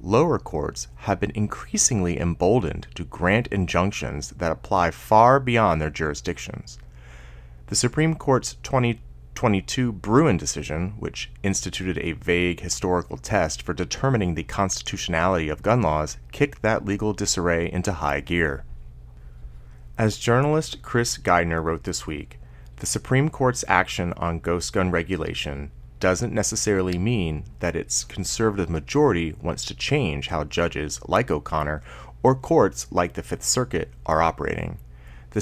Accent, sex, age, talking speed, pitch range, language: American, male, 30-49, 135 wpm, 75-110 Hz, English